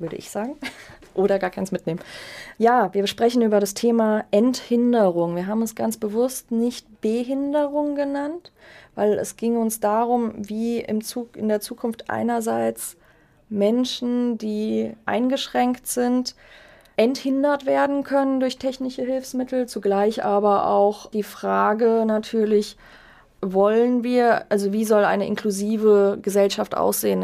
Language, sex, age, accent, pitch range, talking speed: German, female, 20-39, German, 200-245 Hz, 125 wpm